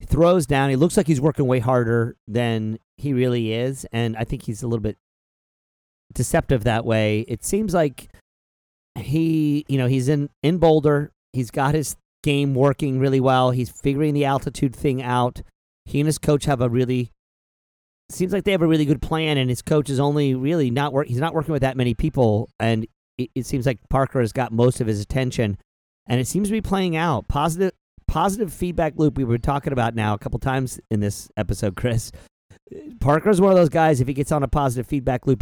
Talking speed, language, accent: 210 wpm, English, American